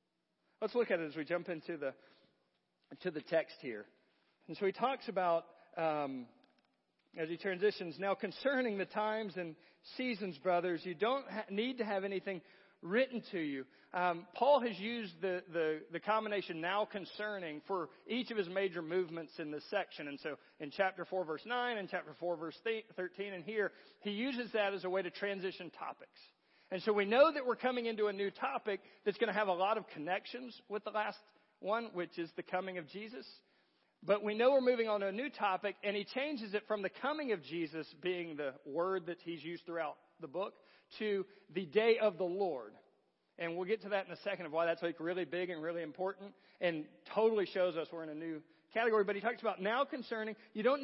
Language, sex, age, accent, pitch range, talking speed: English, male, 40-59, American, 175-220 Hz, 210 wpm